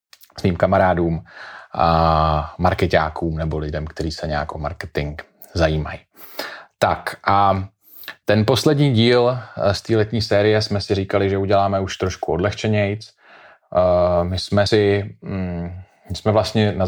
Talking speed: 130 wpm